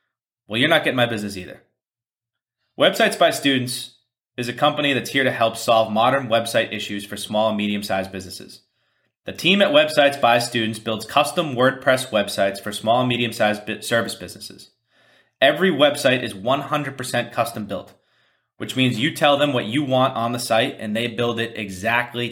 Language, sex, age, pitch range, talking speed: English, male, 30-49, 110-140 Hz, 170 wpm